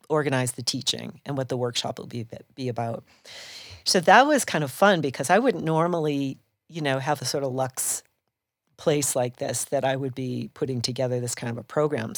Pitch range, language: 130-150 Hz, English